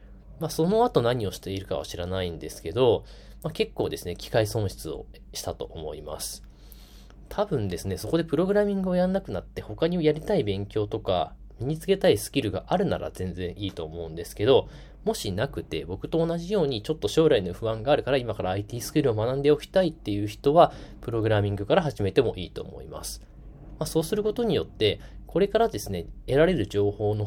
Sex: male